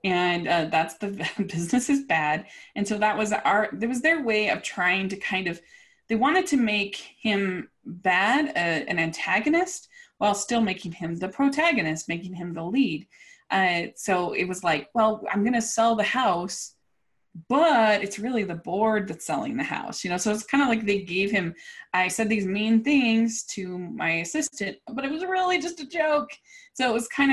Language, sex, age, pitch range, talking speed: English, female, 20-39, 185-275 Hz, 195 wpm